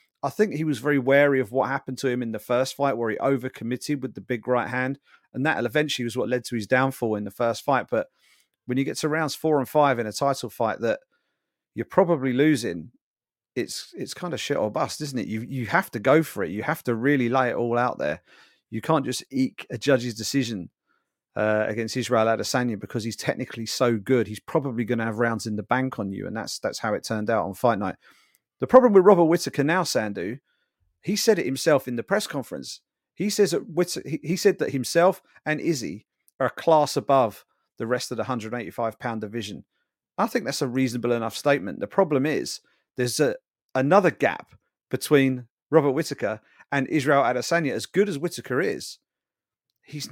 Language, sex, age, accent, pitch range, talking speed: English, male, 40-59, British, 120-150 Hz, 210 wpm